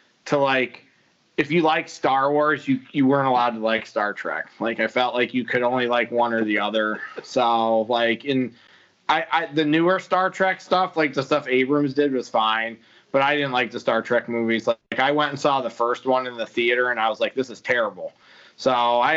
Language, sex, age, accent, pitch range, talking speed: English, male, 20-39, American, 120-150 Hz, 225 wpm